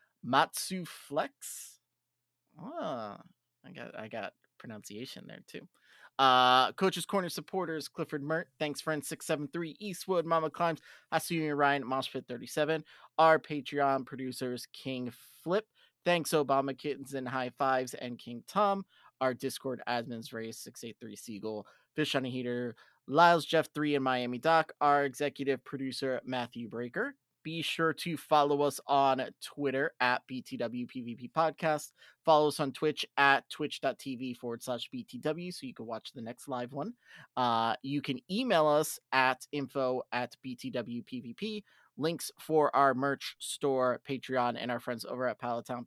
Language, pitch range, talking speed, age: English, 125-160 Hz, 150 wpm, 30-49